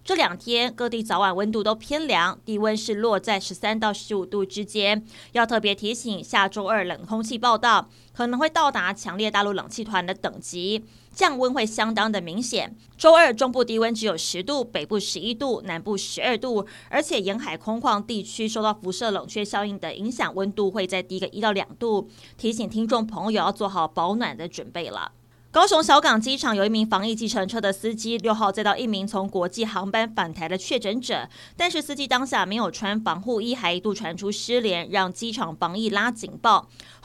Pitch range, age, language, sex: 195-230 Hz, 20-39, Chinese, female